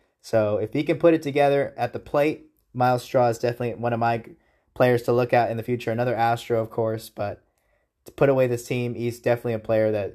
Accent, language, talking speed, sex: American, English, 230 wpm, male